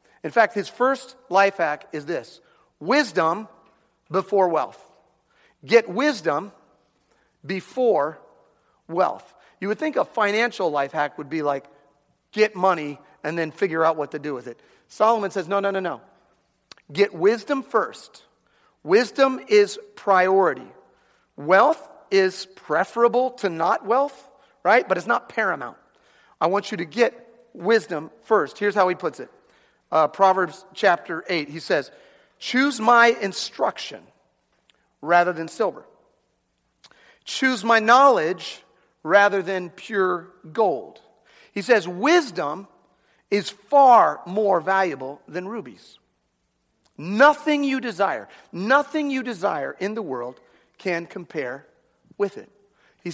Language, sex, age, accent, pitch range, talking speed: English, male, 40-59, American, 175-245 Hz, 130 wpm